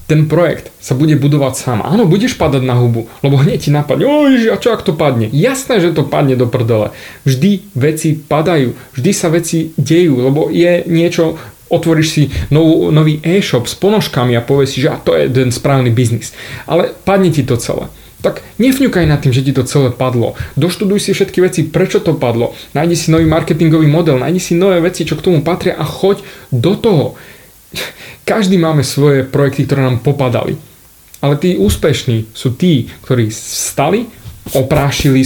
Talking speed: 180 wpm